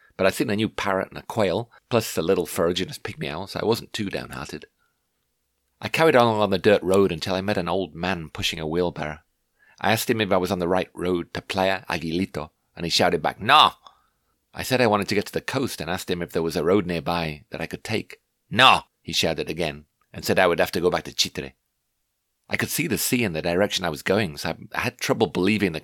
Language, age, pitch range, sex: English, 40-59, 80-95 Hz, male